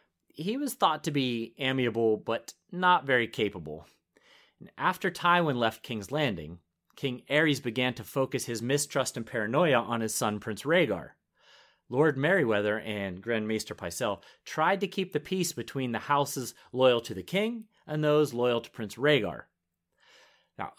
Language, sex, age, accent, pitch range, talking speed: English, male, 30-49, American, 105-145 Hz, 155 wpm